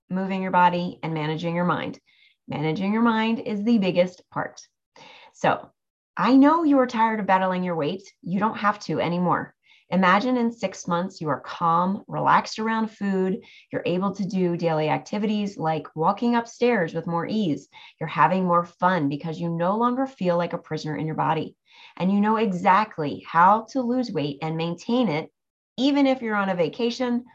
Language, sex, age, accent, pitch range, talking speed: English, female, 30-49, American, 170-230 Hz, 180 wpm